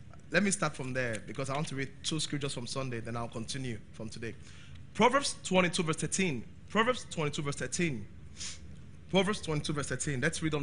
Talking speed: 190 wpm